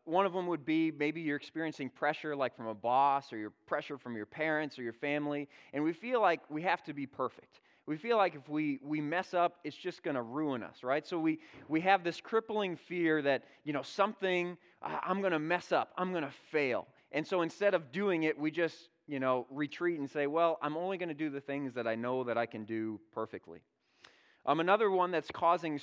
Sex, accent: male, American